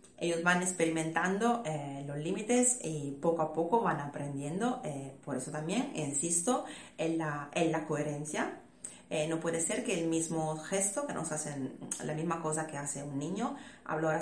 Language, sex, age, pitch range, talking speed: Spanish, female, 30-49, 150-200 Hz, 175 wpm